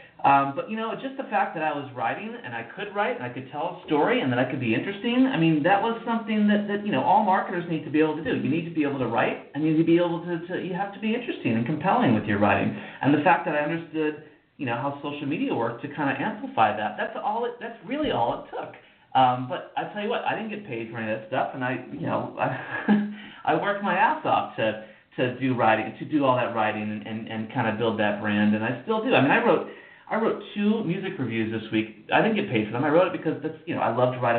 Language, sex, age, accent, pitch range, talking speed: English, male, 40-59, American, 130-190 Hz, 290 wpm